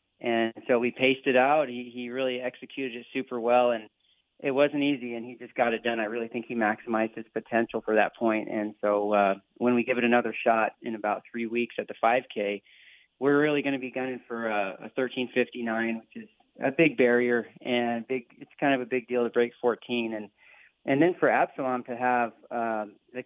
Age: 40-59